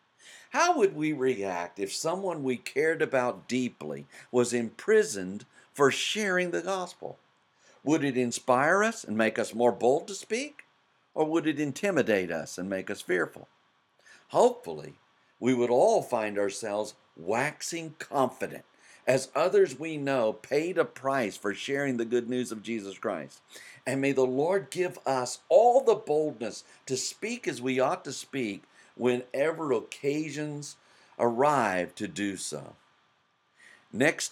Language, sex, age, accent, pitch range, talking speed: English, male, 60-79, American, 110-155 Hz, 145 wpm